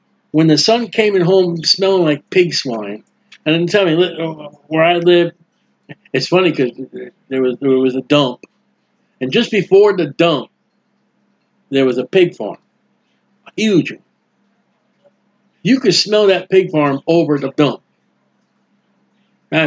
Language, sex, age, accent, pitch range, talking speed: English, male, 60-79, American, 150-205 Hz, 145 wpm